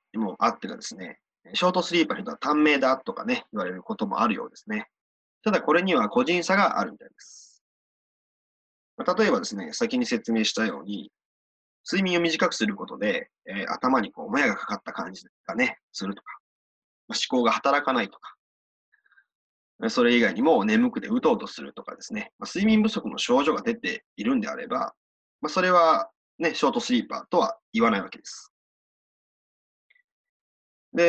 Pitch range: 150-245 Hz